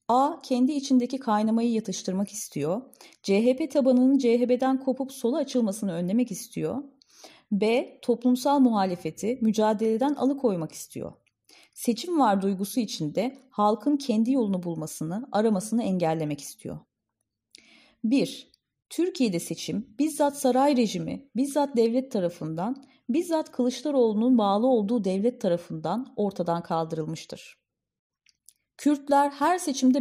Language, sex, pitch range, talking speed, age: Turkish, female, 195-265 Hz, 100 wpm, 30-49